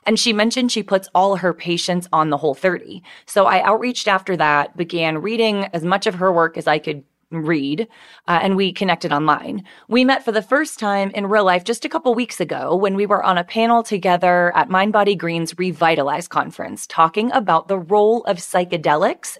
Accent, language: American, English